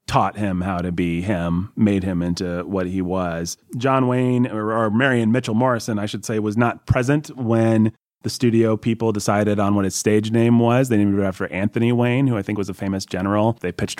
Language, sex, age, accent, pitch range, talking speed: English, male, 30-49, American, 100-120 Hz, 220 wpm